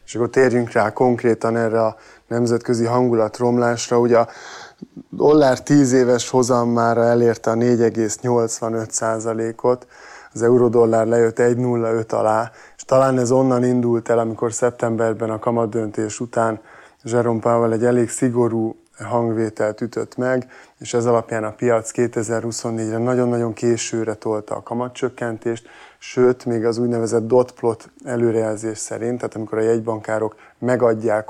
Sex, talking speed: male, 125 wpm